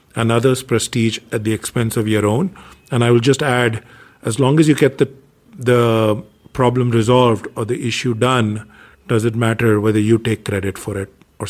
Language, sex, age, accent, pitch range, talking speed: English, male, 50-69, Indian, 110-135 Hz, 195 wpm